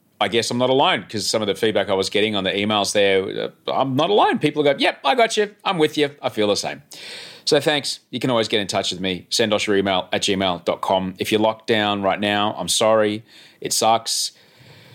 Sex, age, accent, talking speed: male, 30-49, Australian, 235 wpm